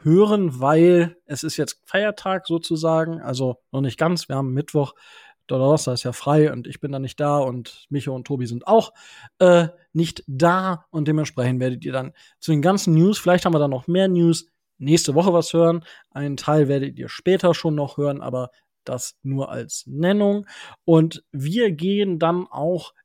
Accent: German